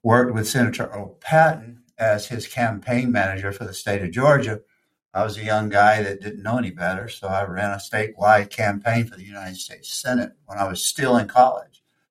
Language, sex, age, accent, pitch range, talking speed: English, male, 60-79, American, 100-130 Hz, 200 wpm